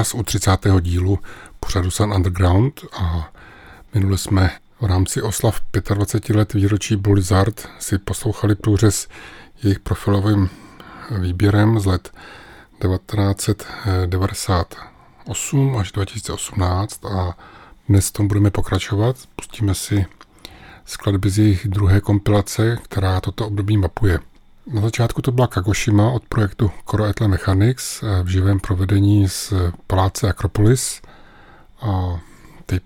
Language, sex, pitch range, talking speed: Czech, male, 95-105 Hz, 110 wpm